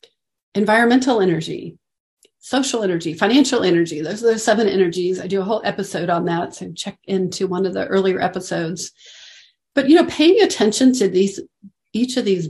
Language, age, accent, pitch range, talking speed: English, 40-59, American, 185-230 Hz, 175 wpm